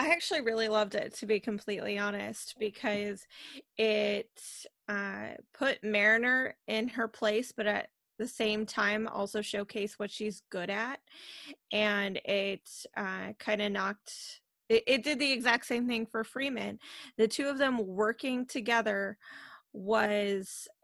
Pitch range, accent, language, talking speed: 210-245 Hz, American, English, 145 wpm